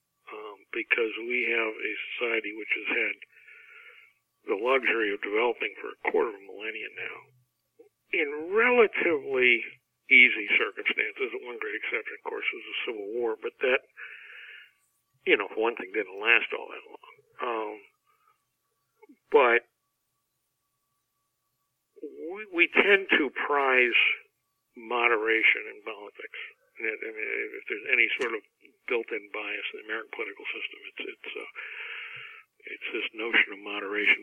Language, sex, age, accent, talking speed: English, male, 60-79, American, 130 wpm